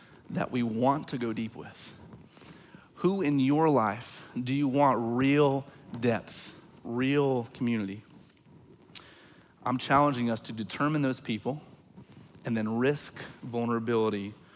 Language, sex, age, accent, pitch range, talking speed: English, male, 30-49, American, 120-170 Hz, 120 wpm